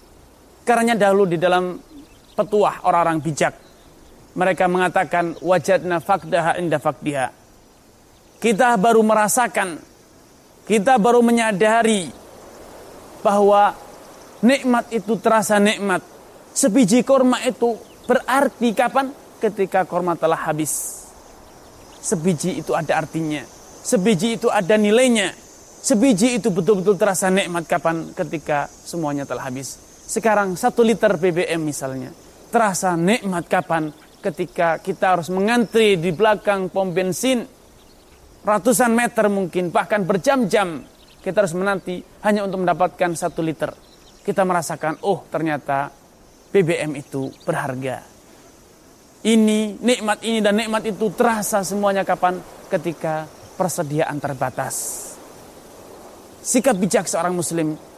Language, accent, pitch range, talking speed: Indonesian, native, 170-220 Hz, 105 wpm